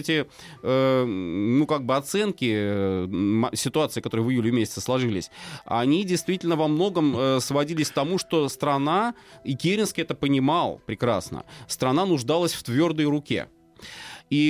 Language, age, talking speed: Russian, 30-49, 120 wpm